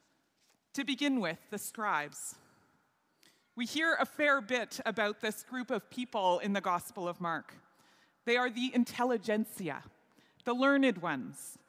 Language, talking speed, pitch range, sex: English, 140 wpm, 210-280 Hz, female